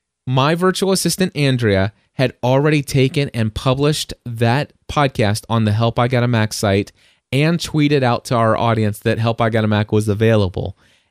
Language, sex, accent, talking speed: English, male, American, 180 wpm